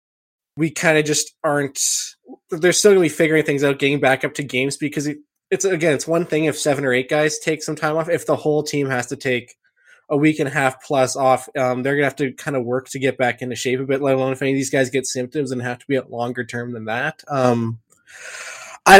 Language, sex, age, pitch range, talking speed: English, male, 20-39, 130-155 Hz, 255 wpm